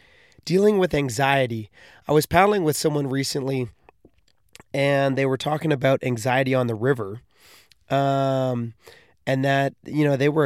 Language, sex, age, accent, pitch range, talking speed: English, male, 20-39, American, 130-150 Hz, 145 wpm